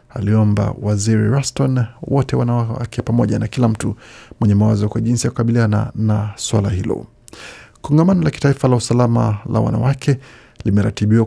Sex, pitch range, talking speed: male, 105-130 Hz, 145 wpm